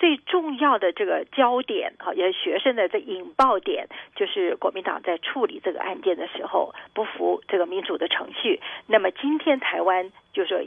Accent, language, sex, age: native, Chinese, female, 40-59